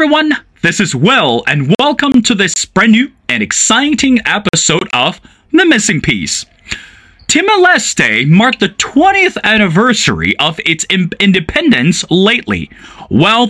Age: 20-39